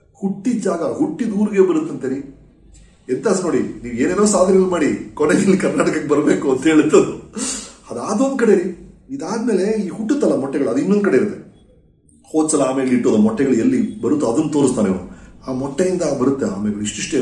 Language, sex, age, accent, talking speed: Kannada, male, 40-59, native, 145 wpm